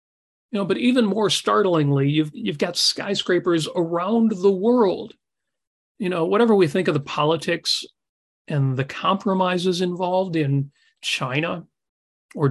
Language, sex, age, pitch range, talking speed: English, male, 40-59, 145-220 Hz, 135 wpm